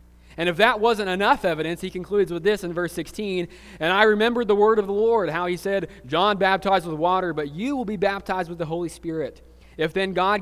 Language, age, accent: English, 30-49, American